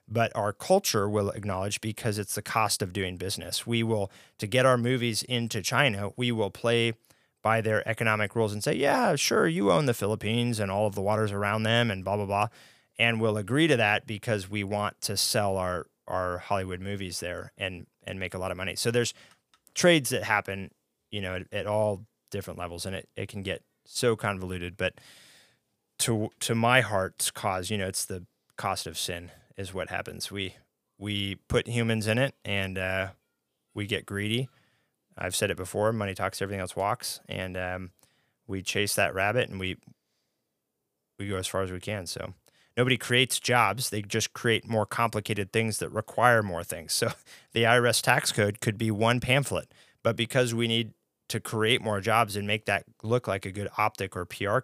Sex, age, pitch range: male, 20-39, 95-115 Hz